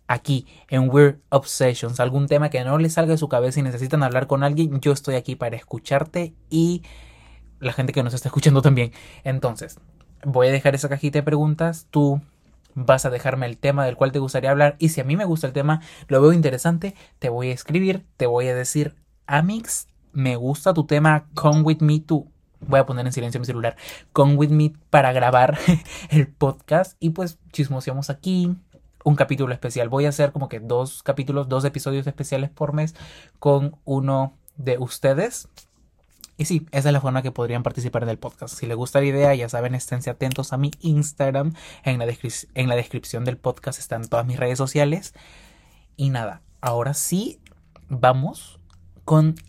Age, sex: 20-39, male